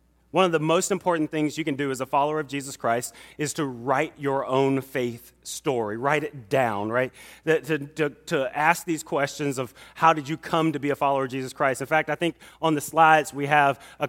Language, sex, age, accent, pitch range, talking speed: English, male, 30-49, American, 120-155 Hz, 225 wpm